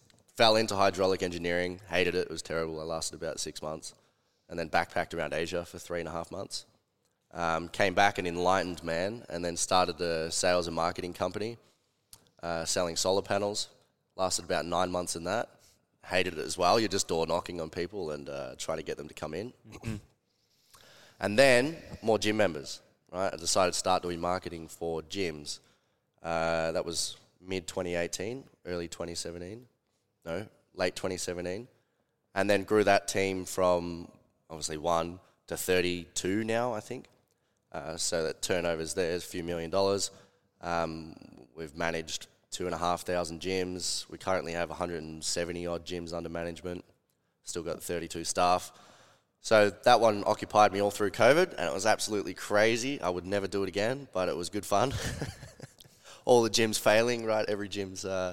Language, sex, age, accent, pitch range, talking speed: English, male, 20-39, Australian, 85-100 Hz, 170 wpm